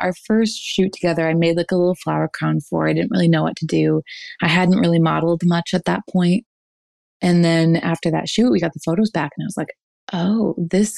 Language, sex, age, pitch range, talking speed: English, female, 20-39, 165-195 Hz, 235 wpm